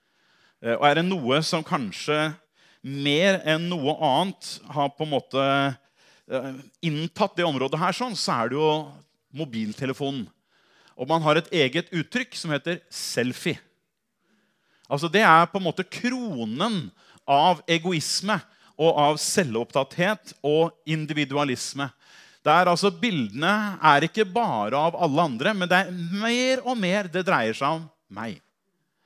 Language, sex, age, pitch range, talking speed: English, male, 30-49, 145-195 Hz, 140 wpm